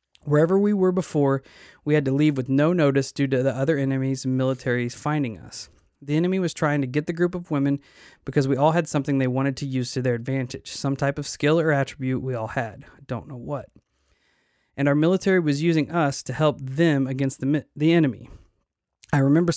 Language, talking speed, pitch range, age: English, 215 wpm, 130-160 Hz, 20-39